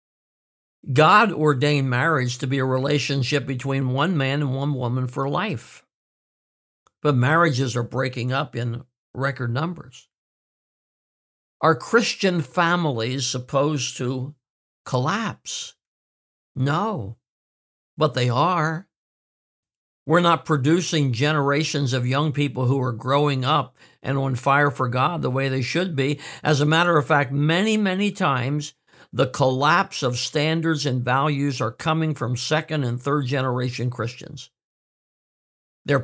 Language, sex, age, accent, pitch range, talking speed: English, male, 60-79, American, 130-155 Hz, 130 wpm